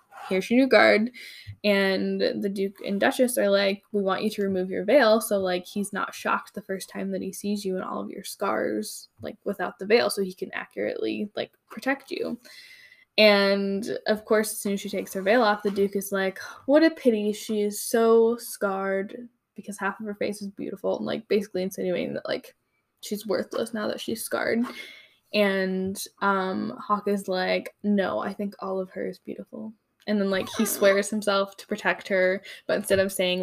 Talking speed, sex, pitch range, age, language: 205 wpm, female, 185-215 Hz, 10-29, English